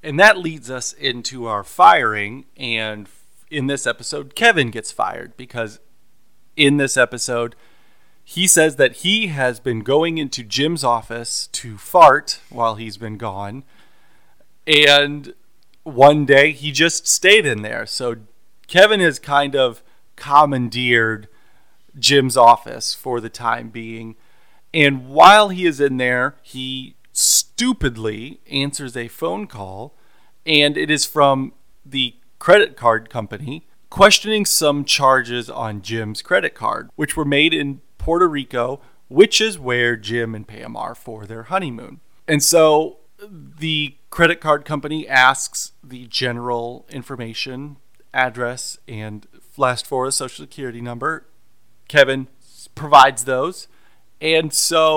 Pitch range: 120-150 Hz